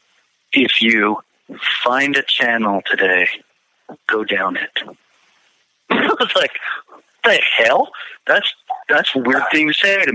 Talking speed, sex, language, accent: 130 wpm, male, English, American